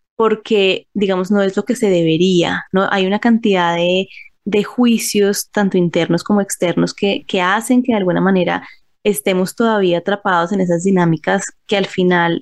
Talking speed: 170 wpm